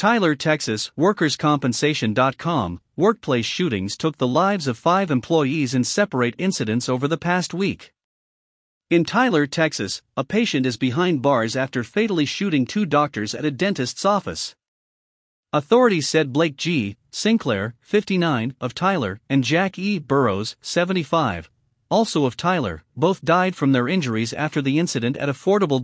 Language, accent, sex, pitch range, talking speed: English, American, male, 130-185 Hz, 140 wpm